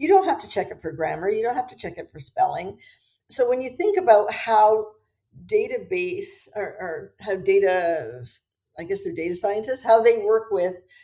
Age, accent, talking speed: 50-69, American, 195 wpm